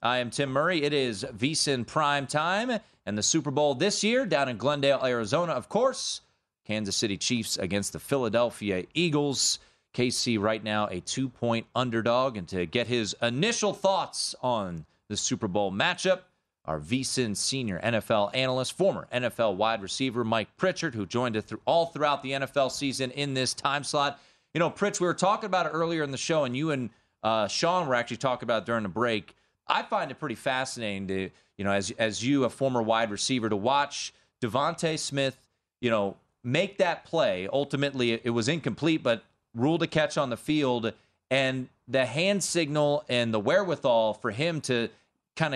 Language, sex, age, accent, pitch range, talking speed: English, male, 30-49, American, 115-150 Hz, 185 wpm